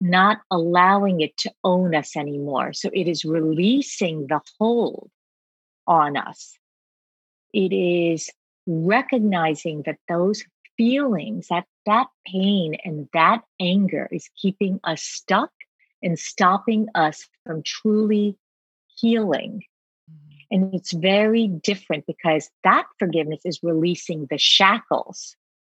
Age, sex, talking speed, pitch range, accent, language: 40-59, female, 110 wpm, 155-195 Hz, American, English